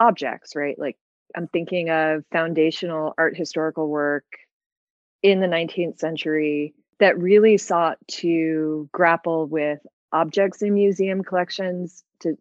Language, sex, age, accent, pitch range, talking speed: English, female, 30-49, American, 160-195 Hz, 120 wpm